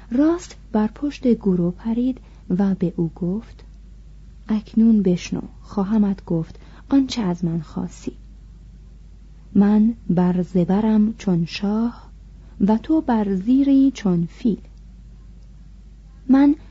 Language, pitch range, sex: Persian, 190-255 Hz, female